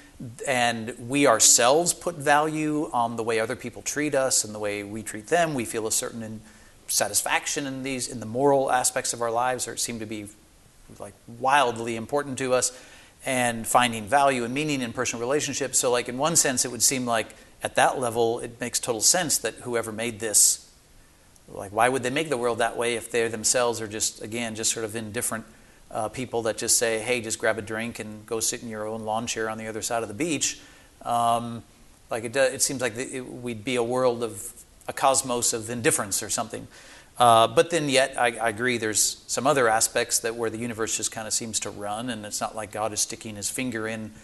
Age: 40-59